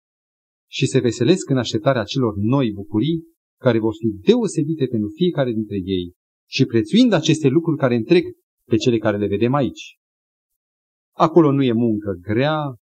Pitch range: 105-175 Hz